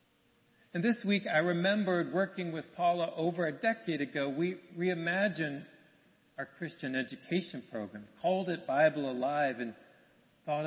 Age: 40-59